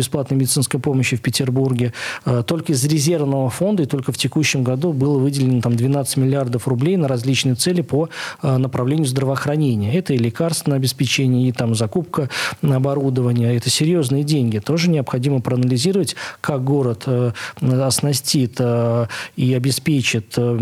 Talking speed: 130 wpm